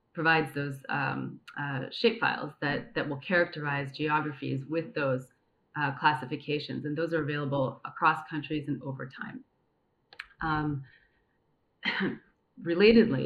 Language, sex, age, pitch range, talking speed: English, female, 30-49, 145-165 Hz, 115 wpm